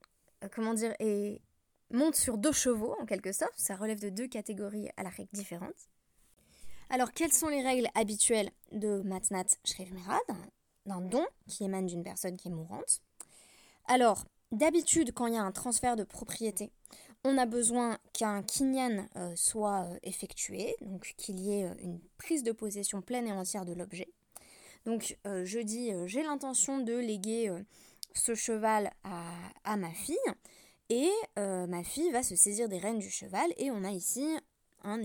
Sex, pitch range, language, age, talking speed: female, 195-245 Hz, French, 20-39, 170 wpm